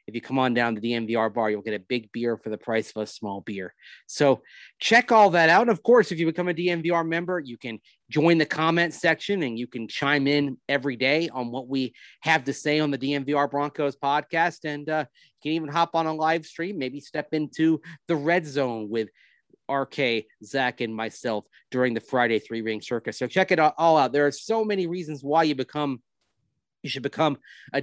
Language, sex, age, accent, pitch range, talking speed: English, male, 30-49, American, 125-165 Hz, 220 wpm